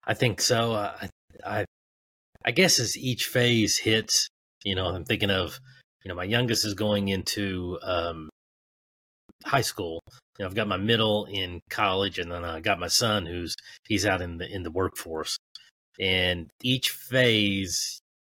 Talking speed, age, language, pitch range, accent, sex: 170 wpm, 30-49, English, 90-110 Hz, American, male